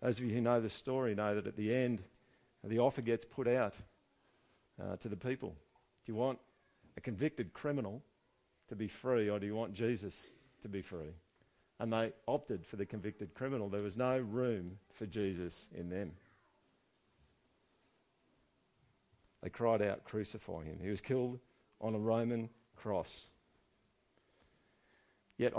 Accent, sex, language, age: Australian, male, English, 50-69